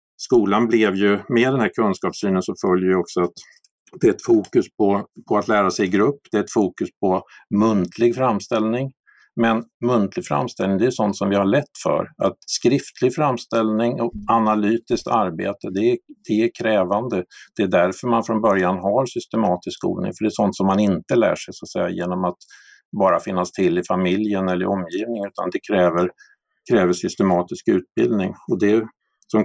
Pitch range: 90-115 Hz